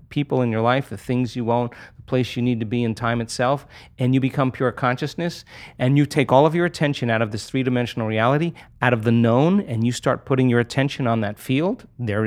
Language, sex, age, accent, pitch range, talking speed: English, male, 30-49, American, 115-145 Hz, 235 wpm